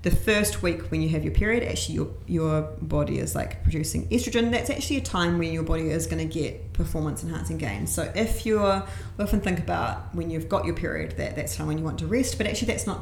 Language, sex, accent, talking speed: English, female, Australian, 245 wpm